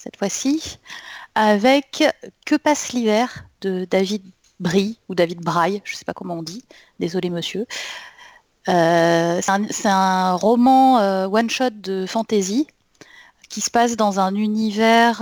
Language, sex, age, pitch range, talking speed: French, female, 30-49, 175-220 Hz, 140 wpm